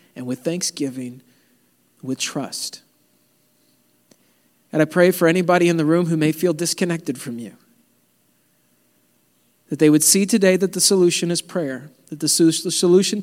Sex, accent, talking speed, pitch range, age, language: male, American, 145 wpm, 145-210 Hz, 40-59, English